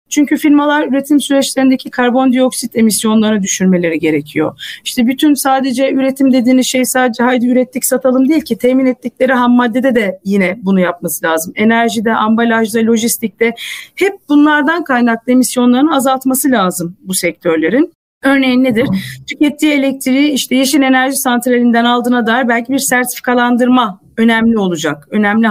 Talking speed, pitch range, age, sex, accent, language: 130 wpm, 210-270 Hz, 40-59, female, native, Turkish